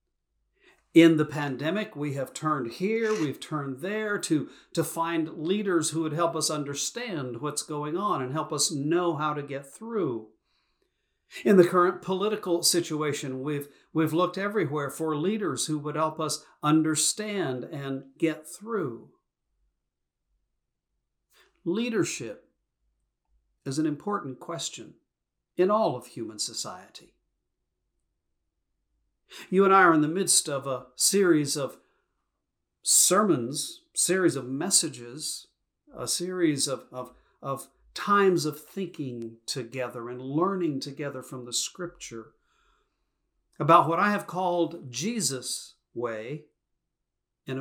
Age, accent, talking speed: 50-69, American, 120 wpm